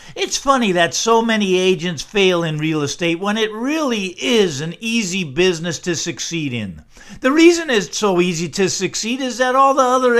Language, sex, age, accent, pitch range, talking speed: English, male, 50-69, American, 165-235 Hz, 190 wpm